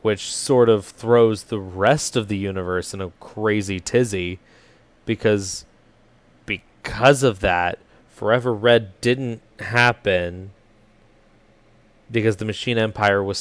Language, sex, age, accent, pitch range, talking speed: English, male, 20-39, American, 100-120 Hz, 115 wpm